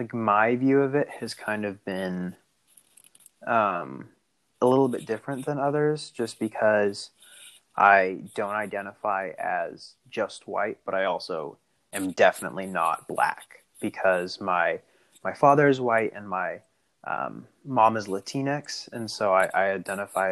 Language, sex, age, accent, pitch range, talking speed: English, male, 20-39, American, 95-130 Hz, 140 wpm